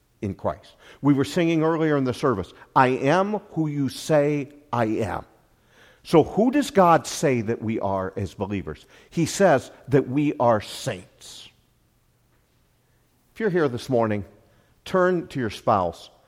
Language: English